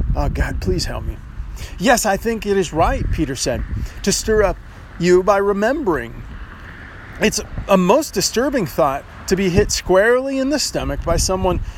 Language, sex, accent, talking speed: English, male, American, 170 wpm